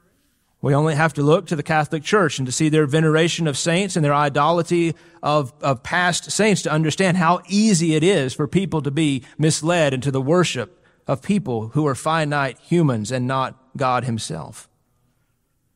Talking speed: 180 wpm